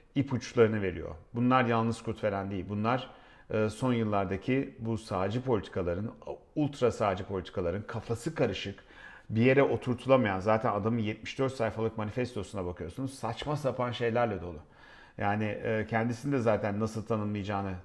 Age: 40-59